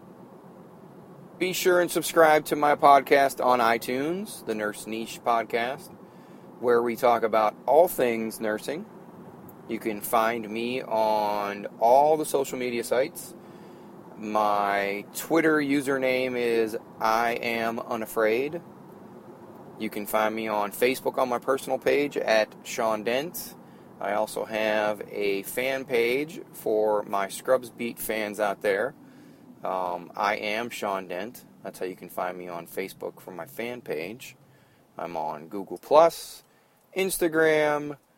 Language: English